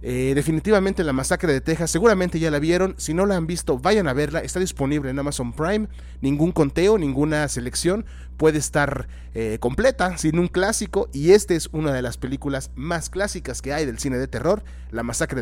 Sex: male